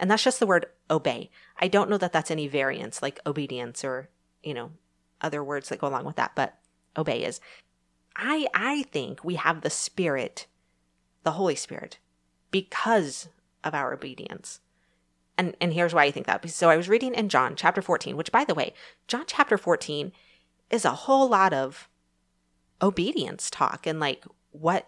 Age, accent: 30-49, American